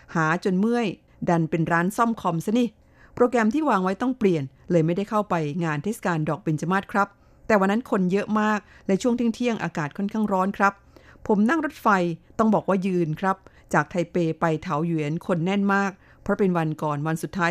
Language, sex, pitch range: Thai, female, 165-210 Hz